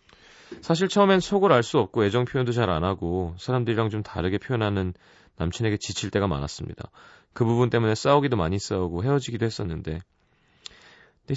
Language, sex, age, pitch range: Korean, male, 30-49, 95-140 Hz